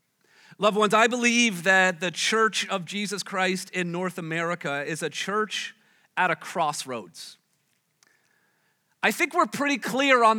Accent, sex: American, male